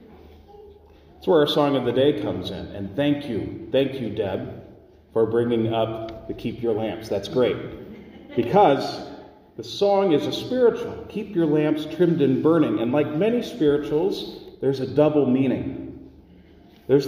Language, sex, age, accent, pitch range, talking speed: English, male, 40-59, American, 115-160 Hz, 160 wpm